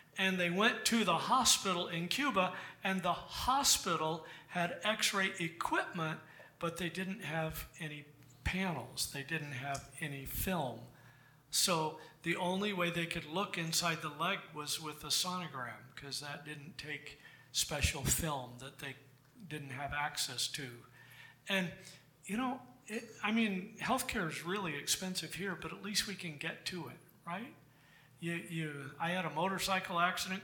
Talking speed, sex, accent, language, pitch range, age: 155 wpm, male, American, English, 145-190 Hz, 50-69